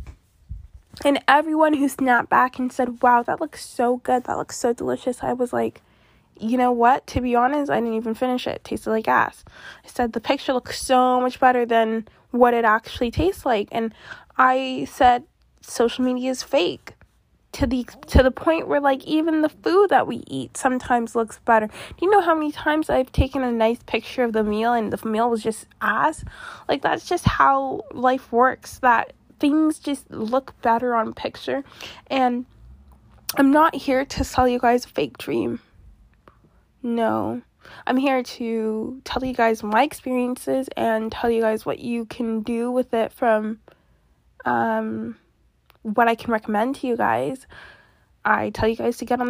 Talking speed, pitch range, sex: 185 wpm, 225-260 Hz, female